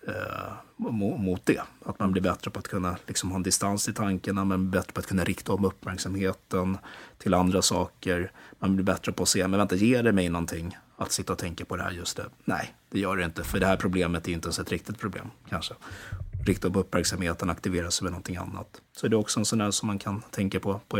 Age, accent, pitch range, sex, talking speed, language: 30-49, native, 90-100 Hz, male, 245 wpm, Swedish